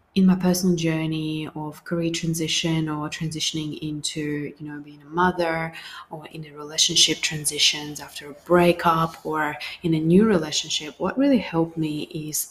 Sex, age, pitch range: female, 20-39, 155-190 Hz